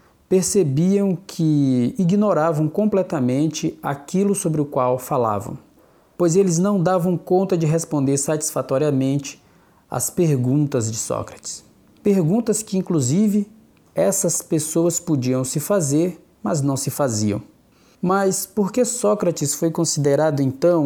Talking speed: 115 wpm